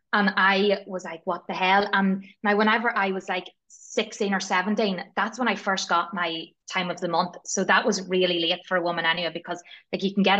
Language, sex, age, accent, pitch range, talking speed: English, female, 20-39, Irish, 180-215 Hz, 230 wpm